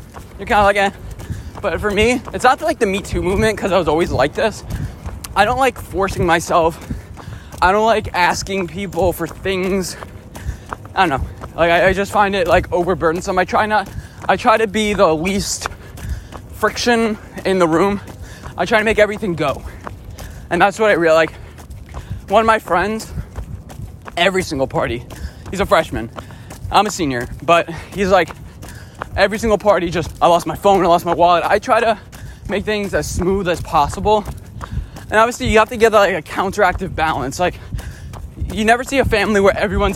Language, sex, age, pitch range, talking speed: English, male, 20-39, 140-205 Hz, 185 wpm